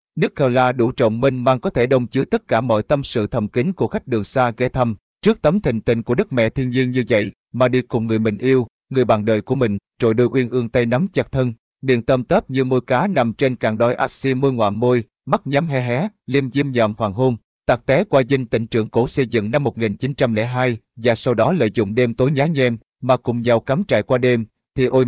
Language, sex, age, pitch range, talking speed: Vietnamese, male, 20-39, 115-135 Hz, 255 wpm